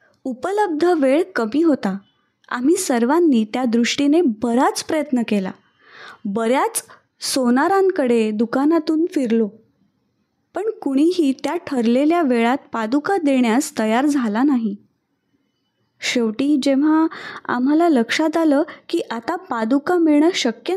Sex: female